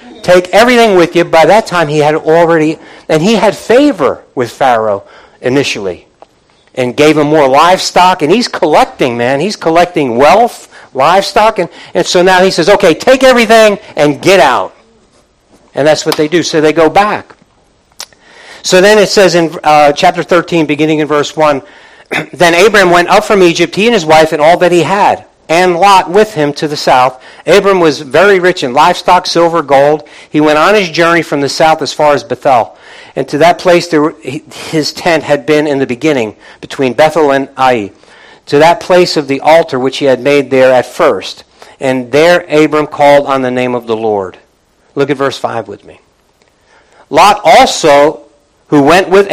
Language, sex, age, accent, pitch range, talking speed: English, male, 60-79, American, 145-180 Hz, 185 wpm